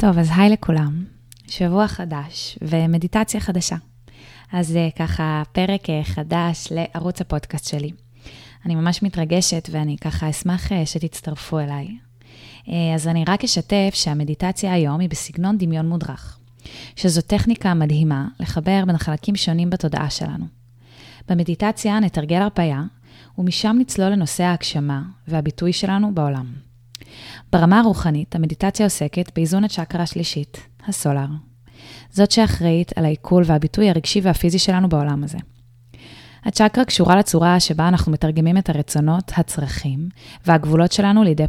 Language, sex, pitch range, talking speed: Hebrew, female, 150-185 Hz, 120 wpm